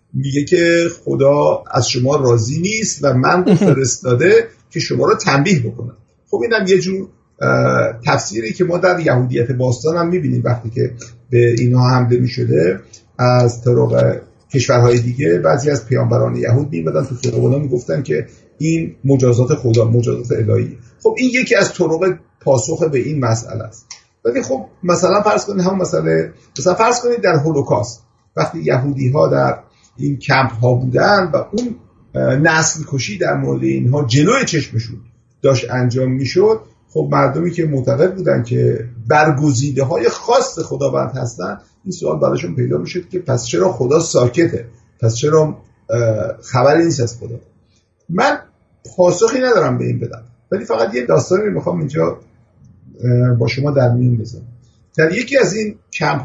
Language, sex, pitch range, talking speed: Persian, male, 115-165 Hz, 155 wpm